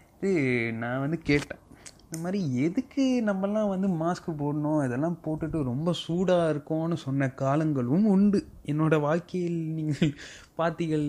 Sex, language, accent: male, Tamil, native